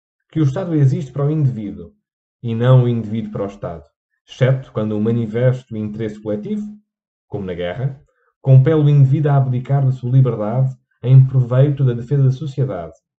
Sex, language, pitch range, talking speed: male, Portuguese, 115-145 Hz, 175 wpm